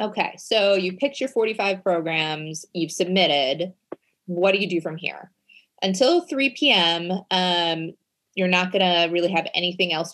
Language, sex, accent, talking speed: English, female, American, 150 wpm